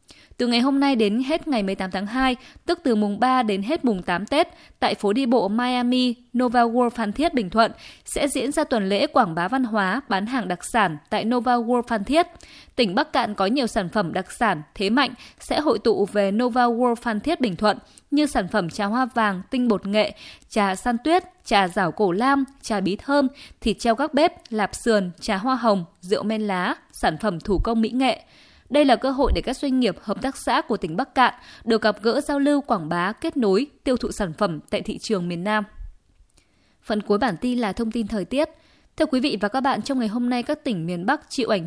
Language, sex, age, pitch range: Vietnamese, female, 20-39, 200-260 Hz